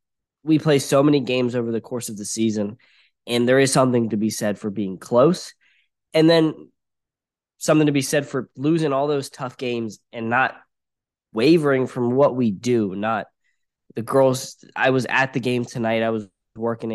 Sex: male